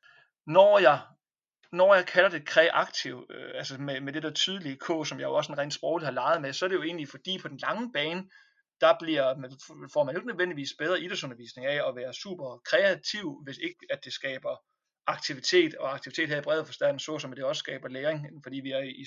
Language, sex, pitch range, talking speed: Danish, male, 140-180 Hz, 225 wpm